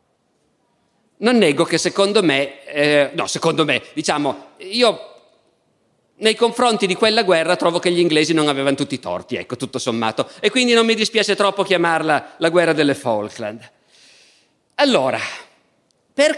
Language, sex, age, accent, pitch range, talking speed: Italian, male, 40-59, native, 160-215 Hz, 150 wpm